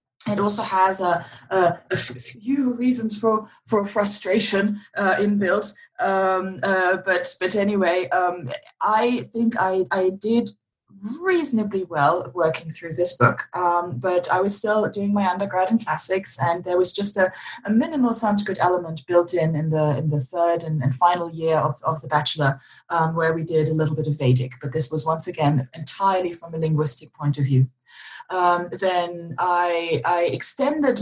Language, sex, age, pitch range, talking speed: English, female, 20-39, 155-200 Hz, 175 wpm